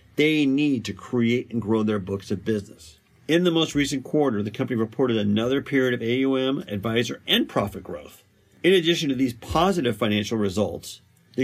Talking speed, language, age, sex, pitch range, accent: 180 wpm, English, 50-69, male, 105-140 Hz, American